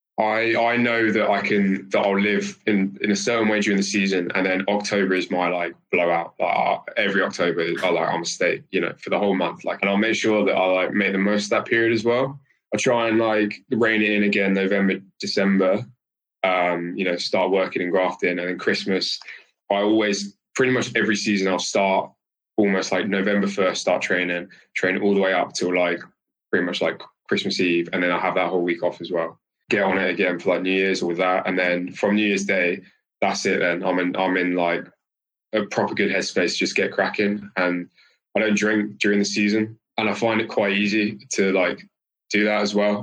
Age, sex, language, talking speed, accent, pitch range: 20-39, male, English, 225 wpm, British, 95-105 Hz